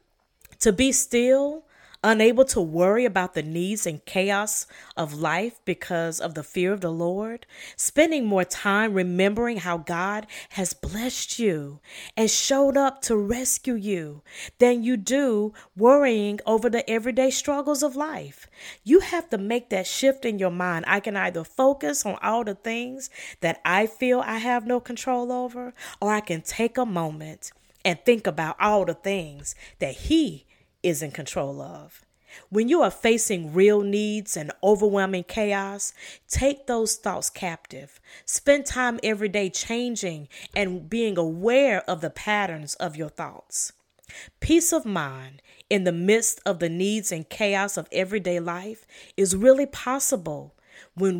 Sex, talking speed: female, 155 wpm